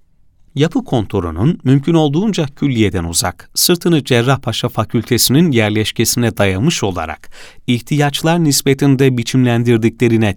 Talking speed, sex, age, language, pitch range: 85 wpm, male, 40-59, Turkish, 110-150 Hz